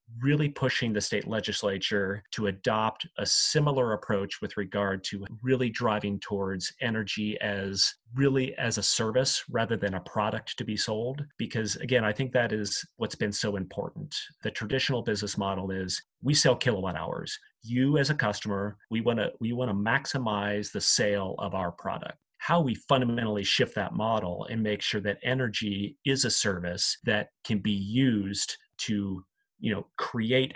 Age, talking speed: 30-49, 170 wpm